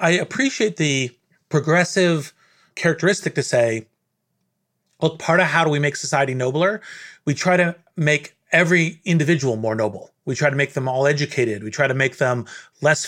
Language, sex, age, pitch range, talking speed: English, male, 30-49, 135-175 Hz, 170 wpm